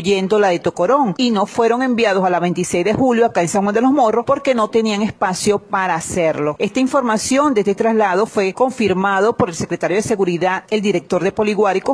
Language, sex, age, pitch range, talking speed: Spanish, female, 40-59, 190-235 Hz, 205 wpm